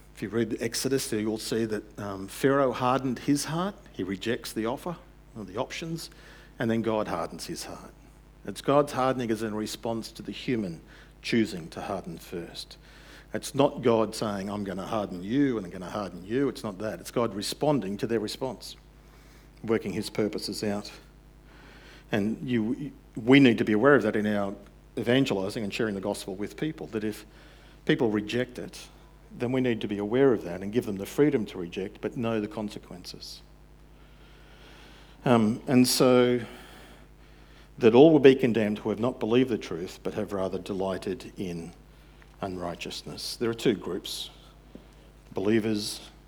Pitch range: 105-135 Hz